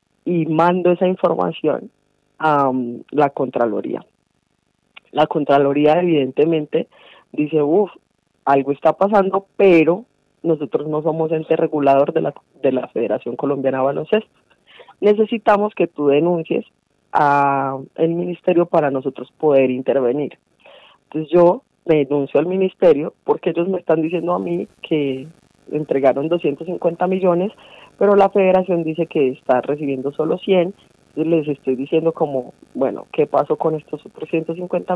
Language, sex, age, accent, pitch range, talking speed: Spanish, female, 20-39, Colombian, 150-180 Hz, 130 wpm